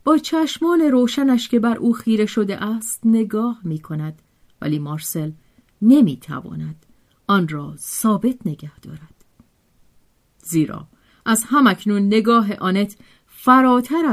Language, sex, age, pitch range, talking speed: Persian, female, 40-59, 165-240 Hz, 110 wpm